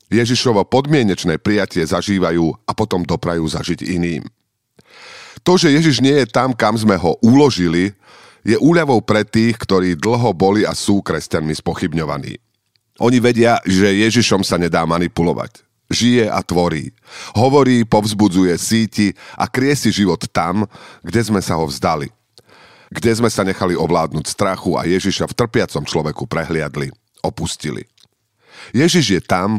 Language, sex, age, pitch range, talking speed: Slovak, male, 40-59, 85-115 Hz, 140 wpm